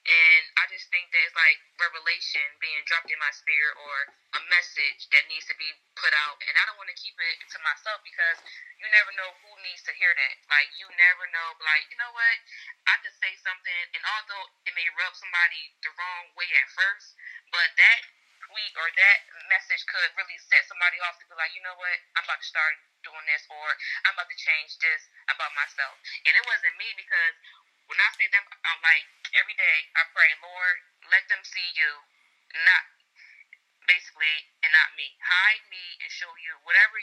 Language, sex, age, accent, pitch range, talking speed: English, female, 20-39, American, 165-195 Hz, 205 wpm